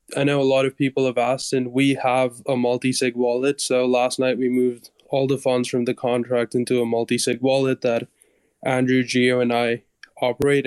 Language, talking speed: English, 195 wpm